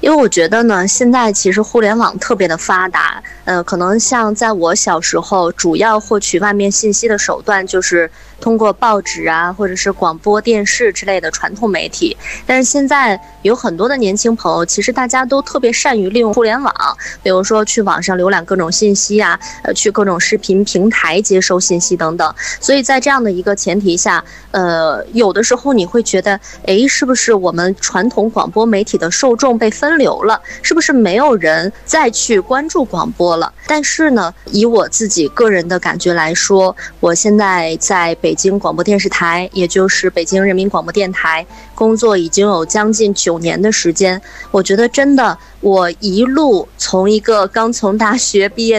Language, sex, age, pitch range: Chinese, female, 20-39, 185-230 Hz